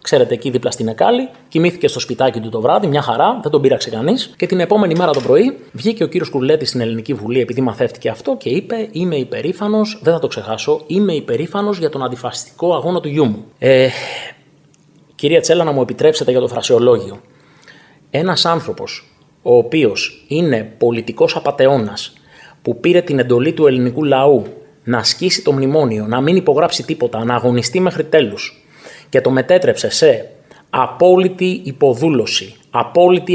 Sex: male